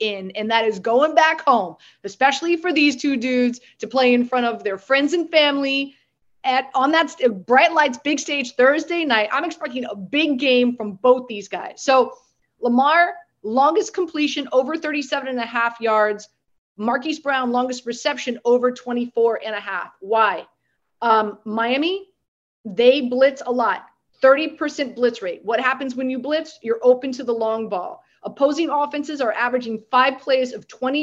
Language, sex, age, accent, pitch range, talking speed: English, female, 30-49, American, 225-275 Hz, 170 wpm